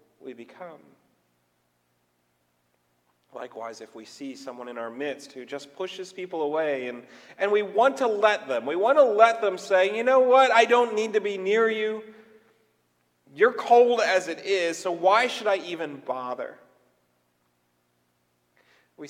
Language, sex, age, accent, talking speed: English, male, 40-59, American, 155 wpm